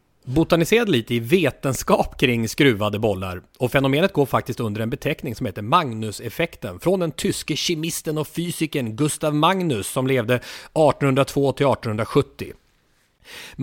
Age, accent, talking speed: 30-49, Swedish, 125 wpm